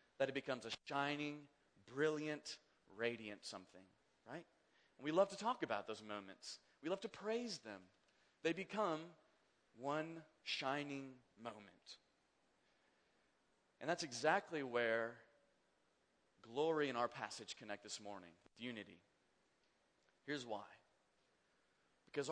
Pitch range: 115-185 Hz